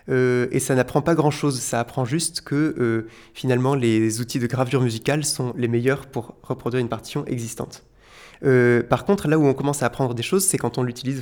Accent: French